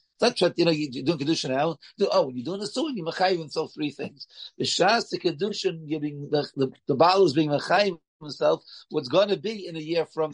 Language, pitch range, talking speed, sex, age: English, 155-200 Hz, 230 wpm, male, 60-79